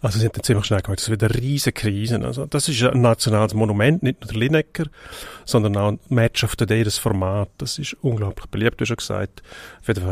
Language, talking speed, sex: German, 225 wpm, male